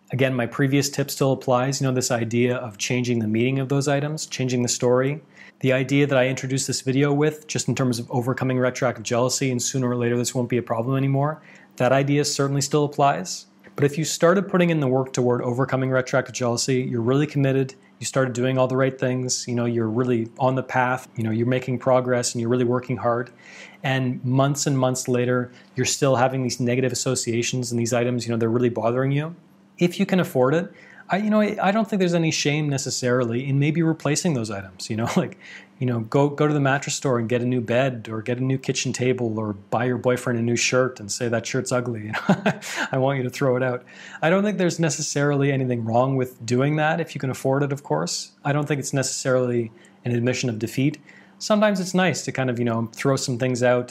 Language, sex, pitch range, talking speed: English, male, 125-140 Hz, 235 wpm